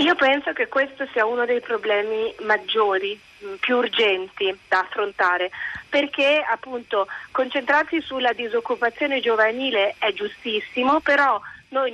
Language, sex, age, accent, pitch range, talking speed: Italian, female, 30-49, native, 225-280 Hz, 115 wpm